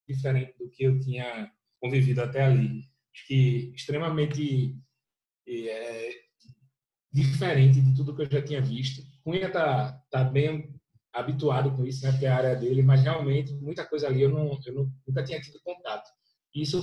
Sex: male